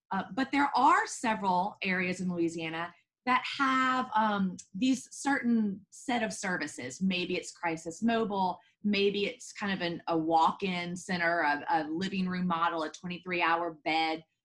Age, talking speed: 30-49, 155 wpm